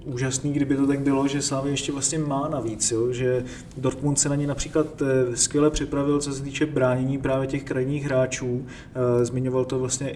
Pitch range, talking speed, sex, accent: 130-140 Hz, 185 wpm, male, native